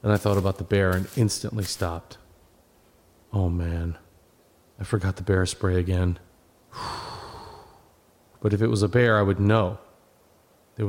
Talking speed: 150 wpm